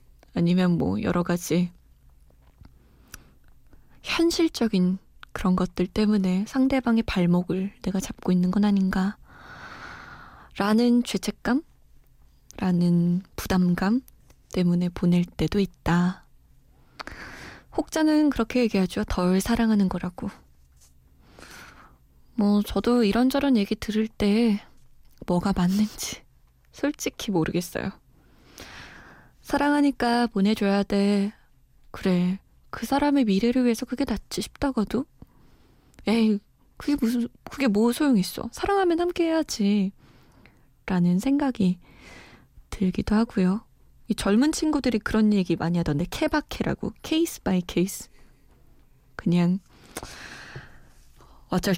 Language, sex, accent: Korean, female, native